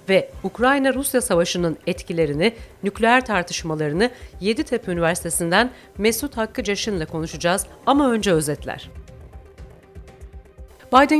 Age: 40-59